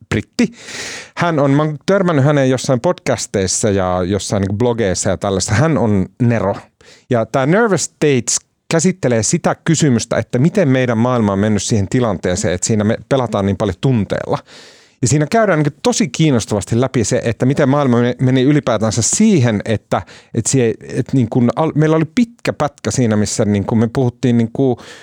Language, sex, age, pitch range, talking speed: Finnish, male, 30-49, 100-135 Hz, 170 wpm